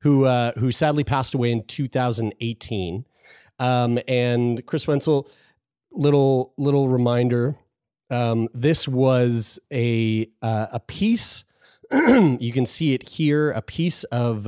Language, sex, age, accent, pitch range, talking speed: English, male, 30-49, American, 115-150 Hz, 125 wpm